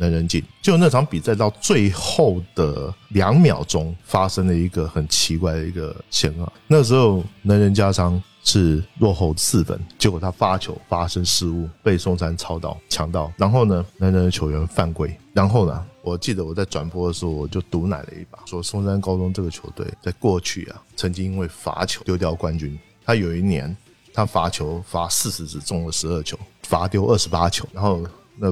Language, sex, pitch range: Chinese, male, 85-105 Hz